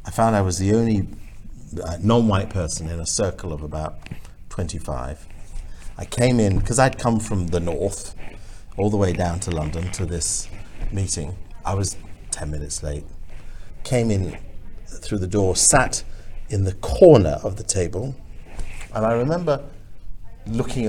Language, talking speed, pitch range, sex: English, 155 wpm, 90-115 Hz, male